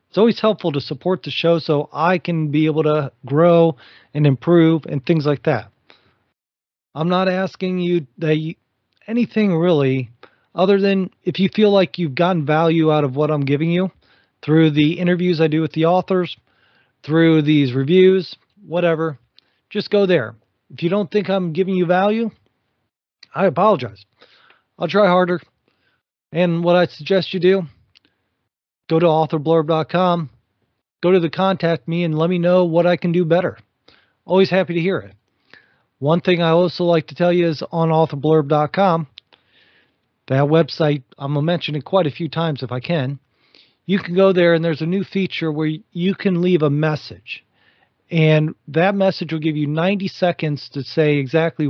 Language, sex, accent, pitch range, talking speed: English, male, American, 150-180 Hz, 175 wpm